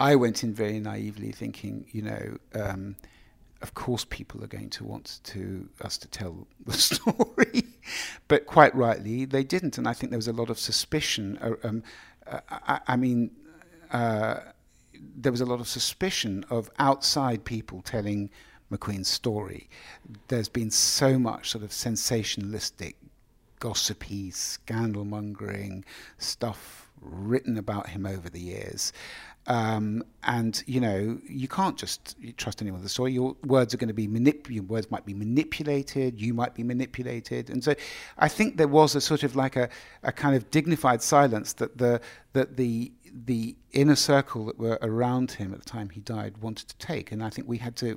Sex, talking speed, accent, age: male, 175 wpm, British, 50-69